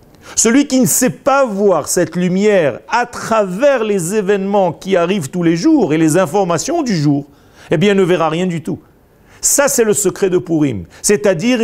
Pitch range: 150-215 Hz